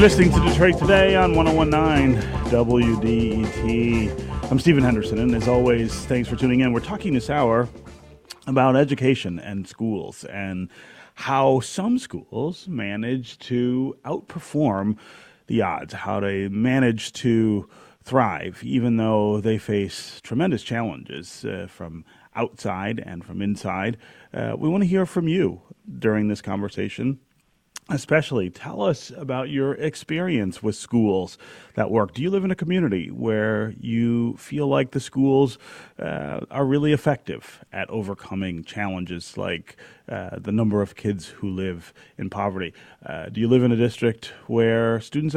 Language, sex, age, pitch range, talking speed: English, male, 30-49, 100-135 Hz, 145 wpm